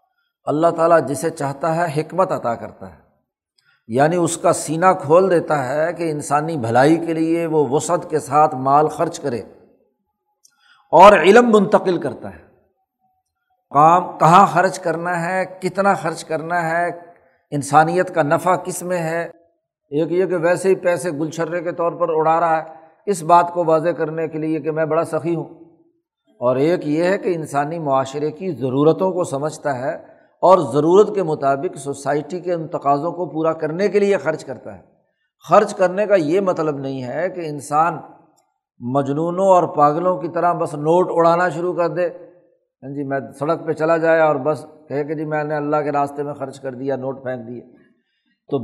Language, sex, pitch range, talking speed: Urdu, male, 150-180 Hz, 180 wpm